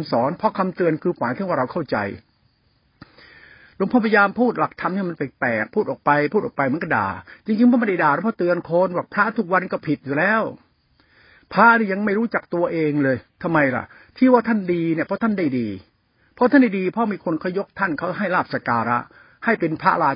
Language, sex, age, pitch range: Thai, male, 60-79, 150-215 Hz